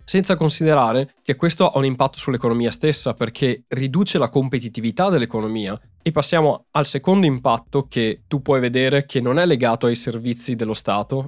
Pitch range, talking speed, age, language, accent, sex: 120-160 Hz, 165 wpm, 20-39, Italian, native, male